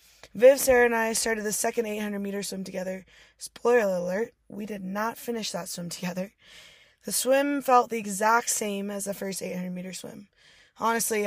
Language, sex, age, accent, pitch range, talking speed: English, female, 20-39, American, 190-235 Hz, 165 wpm